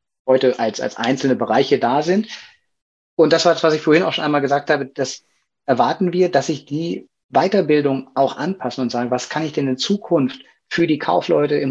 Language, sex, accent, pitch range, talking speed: German, male, German, 125-150 Hz, 205 wpm